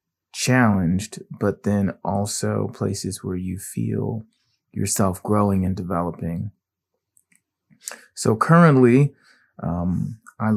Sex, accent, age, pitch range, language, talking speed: male, American, 20-39, 90-110 Hz, English, 90 wpm